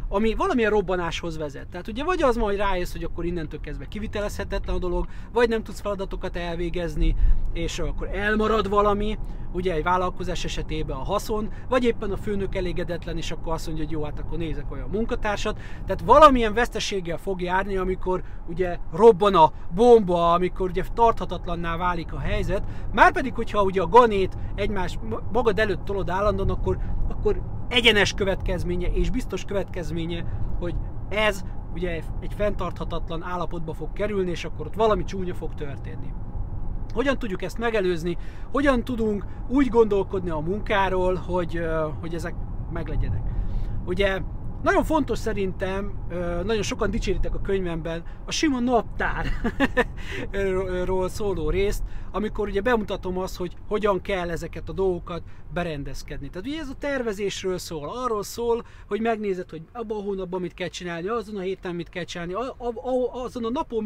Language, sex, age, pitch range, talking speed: Hungarian, male, 30-49, 165-215 Hz, 150 wpm